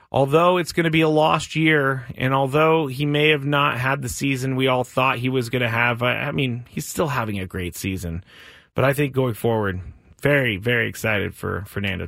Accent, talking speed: American, 215 wpm